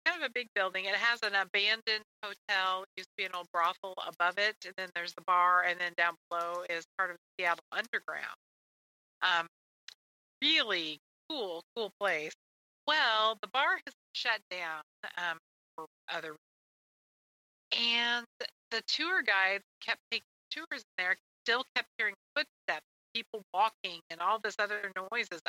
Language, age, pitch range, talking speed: English, 30-49, 180-235 Hz, 165 wpm